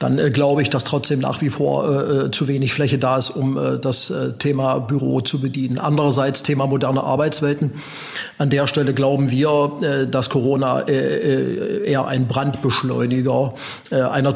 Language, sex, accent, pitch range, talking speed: German, male, German, 130-145 Hz, 175 wpm